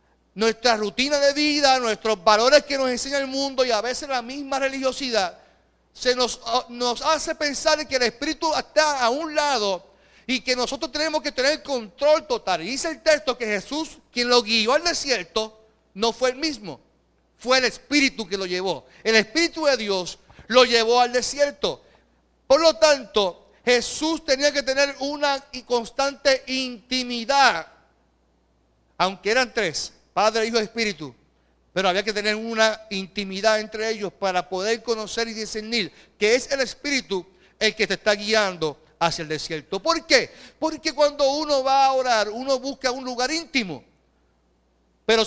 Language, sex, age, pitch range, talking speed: Spanish, male, 40-59, 205-270 Hz, 165 wpm